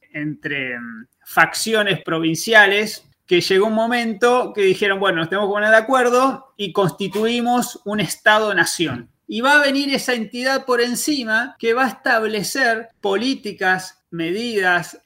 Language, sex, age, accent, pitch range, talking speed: Spanish, male, 30-49, Argentinian, 185-255 Hz, 135 wpm